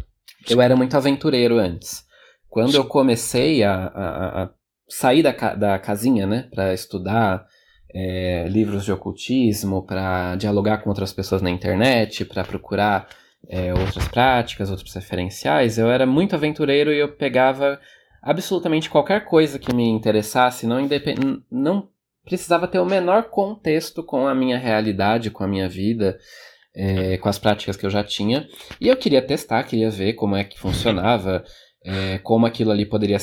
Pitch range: 95-130 Hz